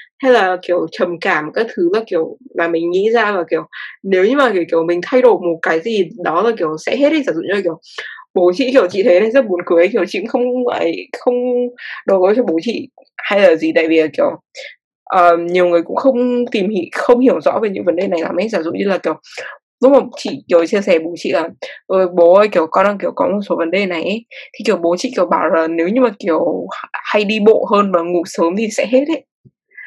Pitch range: 175-255 Hz